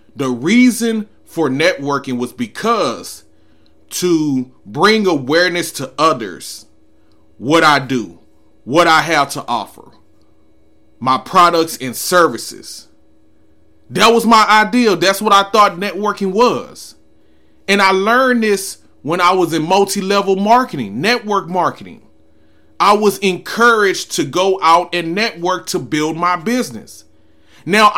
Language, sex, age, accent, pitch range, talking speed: English, male, 30-49, American, 115-195 Hz, 125 wpm